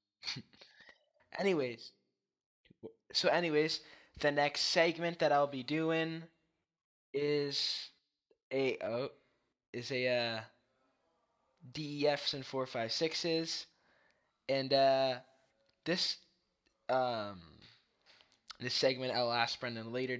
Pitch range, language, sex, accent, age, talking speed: 115-140 Hz, English, male, American, 10-29, 90 wpm